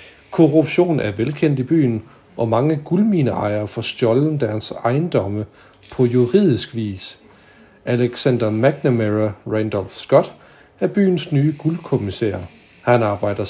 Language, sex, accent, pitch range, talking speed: Danish, male, native, 110-145 Hz, 110 wpm